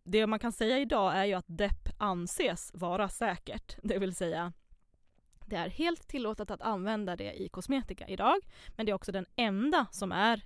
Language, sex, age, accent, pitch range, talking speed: Swedish, female, 20-39, native, 180-220 Hz, 190 wpm